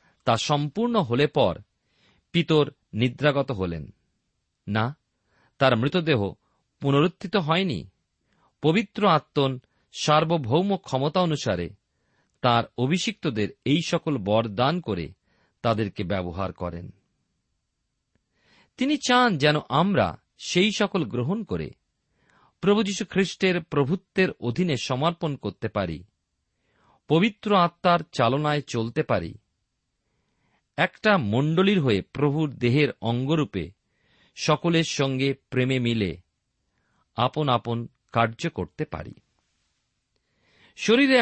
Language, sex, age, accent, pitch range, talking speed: Bengali, male, 40-59, native, 110-175 Hz, 85 wpm